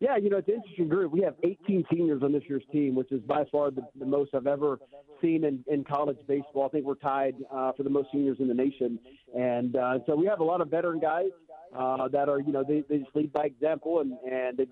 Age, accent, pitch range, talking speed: 40-59, American, 140-160 Hz, 265 wpm